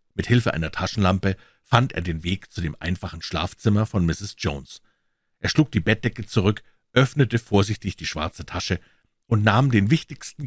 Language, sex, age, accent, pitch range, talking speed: German, male, 50-69, German, 90-115 Hz, 165 wpm